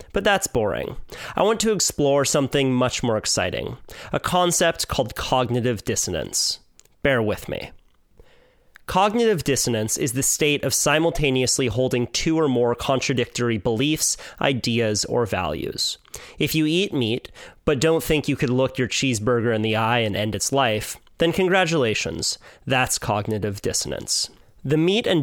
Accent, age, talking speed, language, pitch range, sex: American, 30-49, 145 wpm, English, 115-155 Hz, male